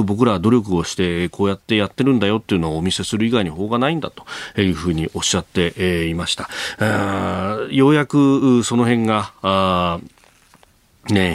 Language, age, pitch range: Japanese, 40-59, 90-110 Hz